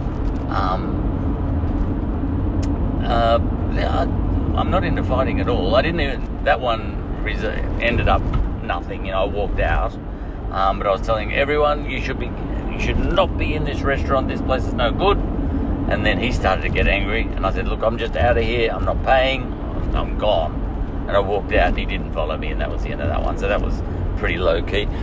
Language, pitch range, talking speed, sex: English, 90-105 Hz, 205 wpm, male